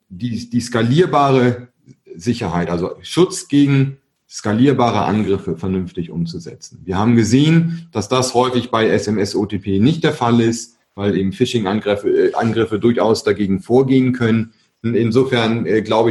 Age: 30-49